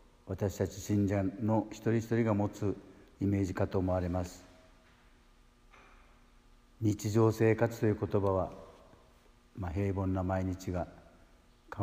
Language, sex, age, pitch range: Japanese, male, 60-79, 90-110 Hz